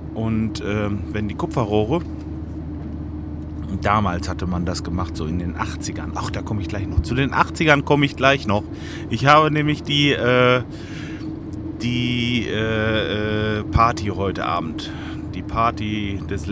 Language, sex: German, male